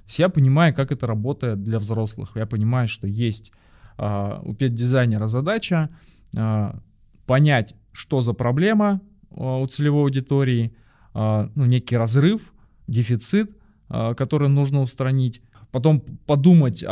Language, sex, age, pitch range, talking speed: Russian, male, 20-39, 110-140 Hz, 105 wpm